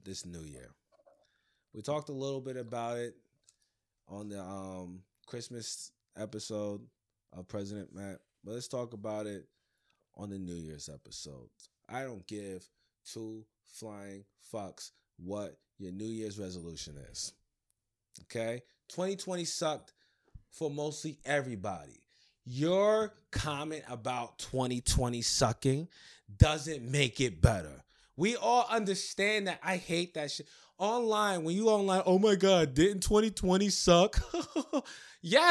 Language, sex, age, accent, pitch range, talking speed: English, male, 20-39, American, 105-165 Hz, 125 wpm